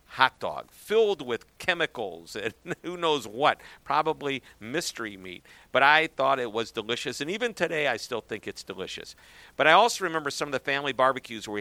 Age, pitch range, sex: 50-69, 110-140 Hz, male